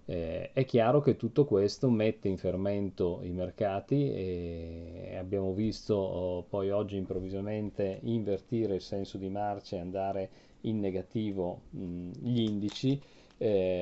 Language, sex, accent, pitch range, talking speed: Italian, male, native, 95-115 Hz, 135 wpm